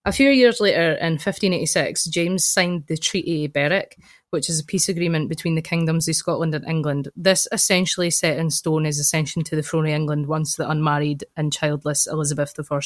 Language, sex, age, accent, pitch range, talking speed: English, female, 20-39, British, 155-185 Hz, 200 wpm